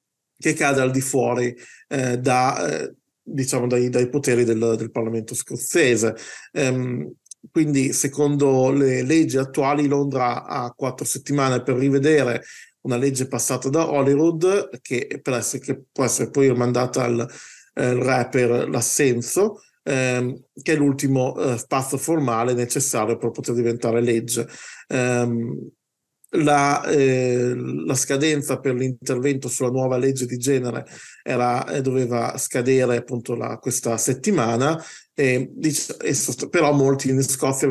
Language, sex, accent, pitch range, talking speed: Italian, male, native, 120-140 Hz, 125 wpm